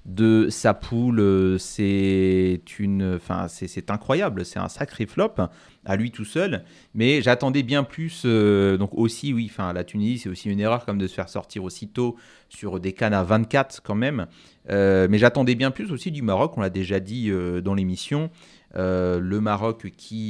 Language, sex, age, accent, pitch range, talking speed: French, male, 30-49, French, 95-120 Hz, 190 wpm